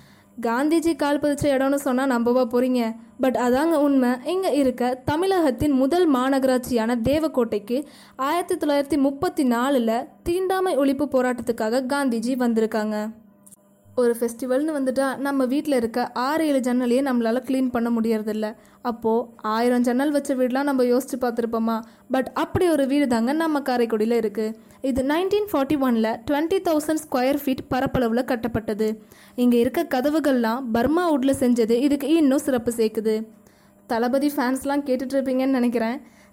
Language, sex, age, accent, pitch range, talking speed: Tamil, female, 20-39, native, 235-285 Hz, 120 wpm